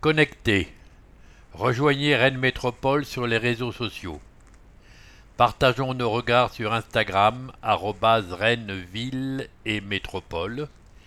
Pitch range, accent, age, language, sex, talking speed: 95-120 Hz, French, 60-79, English, male, 90 wpm